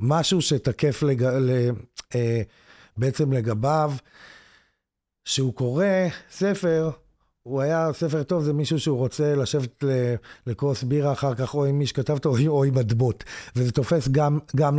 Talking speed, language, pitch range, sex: 135 wpm, Hebrew, 125-155 Hz, male